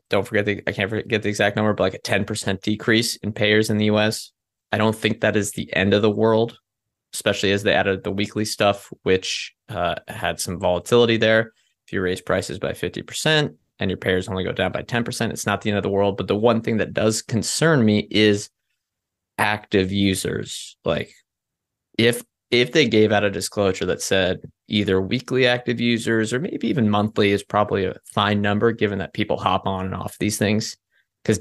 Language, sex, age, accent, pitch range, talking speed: English, male, 20-39, American, 100-115 Hz, 205 wpm